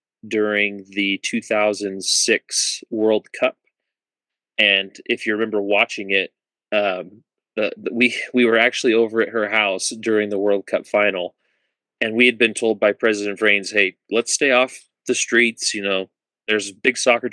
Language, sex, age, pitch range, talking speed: English, male, 30-49, 105-125 Hz, 165 wpm